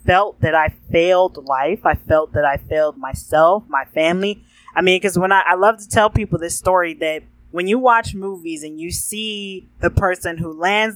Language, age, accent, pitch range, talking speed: English, 20-39, American, 160-200 Hz, 205 wpm